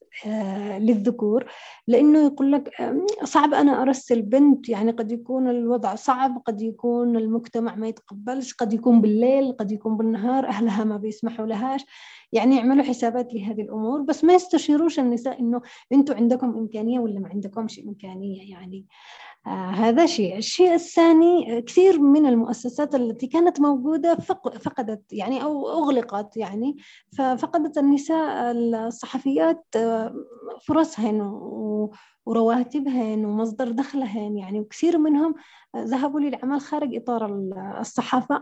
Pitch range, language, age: 220-275 Hz, Arabic, 20-39